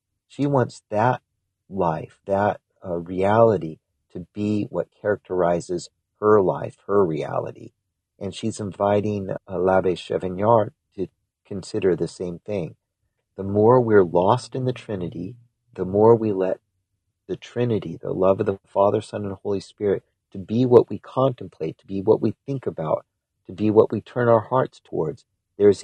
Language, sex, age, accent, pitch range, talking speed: English, male, 50-69, American, 90-110 Hz, 160 wpm